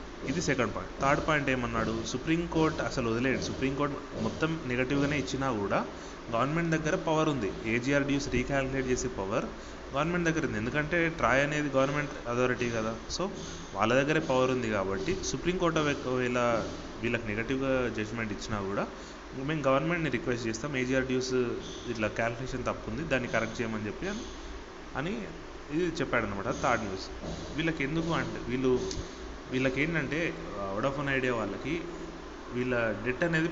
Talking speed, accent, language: 140 wpm, native, Telugu